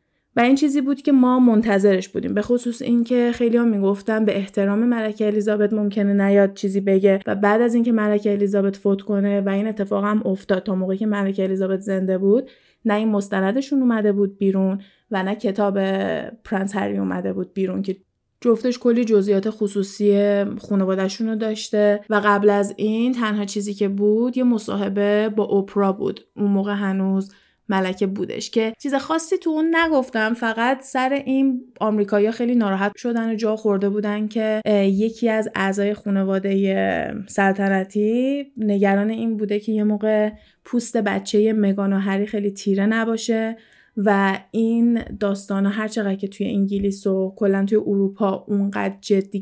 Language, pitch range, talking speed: Persian, 195-225 Hz, 160 wpm